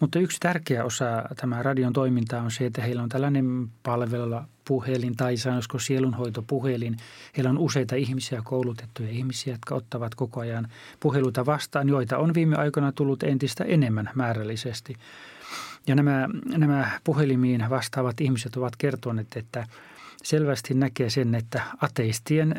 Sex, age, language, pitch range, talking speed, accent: male, 30-49, Finnish, 120-135 Hz, 145 wpm, native